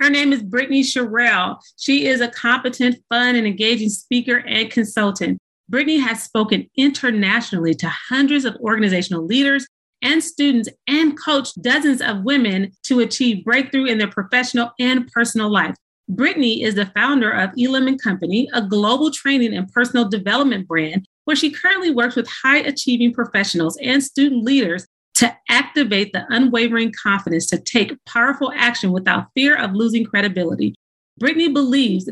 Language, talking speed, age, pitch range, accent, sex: English, 150 wpm, 40-59, 205-270 Hz, American, female